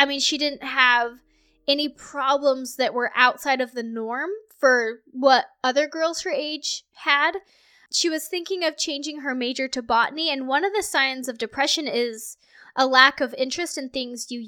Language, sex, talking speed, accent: English, female, 180 wpm, American